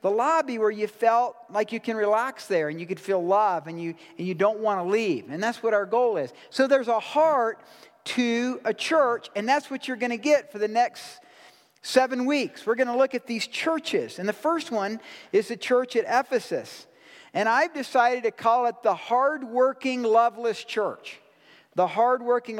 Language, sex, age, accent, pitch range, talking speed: English, male, 50-69, American, 215-260 Hz, 200 wpm